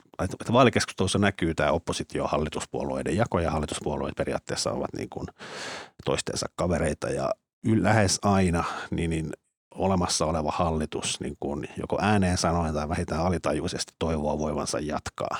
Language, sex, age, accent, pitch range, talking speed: Finnish, male, 50-69, native, 80-100 Hz, 130 wpm